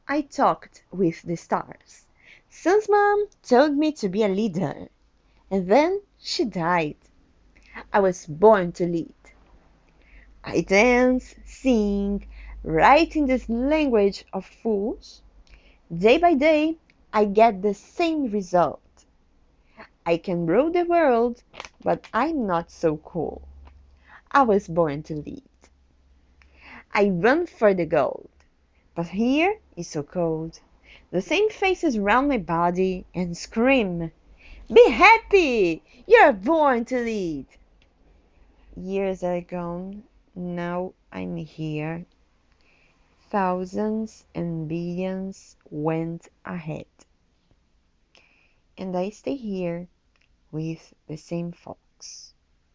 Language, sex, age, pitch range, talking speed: English, female, 30-49, 155-235 Hz, 110 wpm